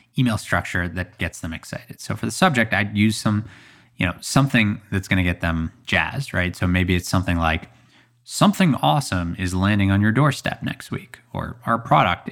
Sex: male